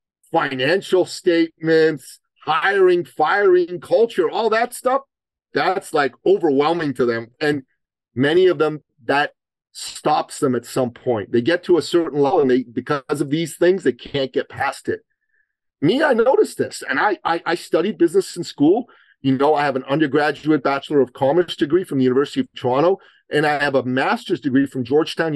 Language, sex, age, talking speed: English, male, 40-59, 175 wpm